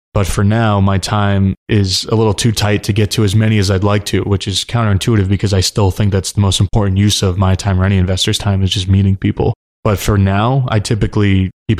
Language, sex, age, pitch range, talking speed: English, male, 20-39, 95-105 Hz, 245 wpm